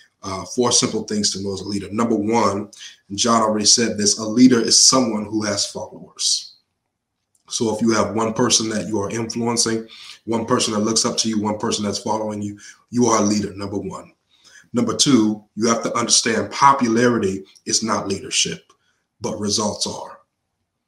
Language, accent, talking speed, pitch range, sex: English, American, 185 wpm, 105-120 Hz, male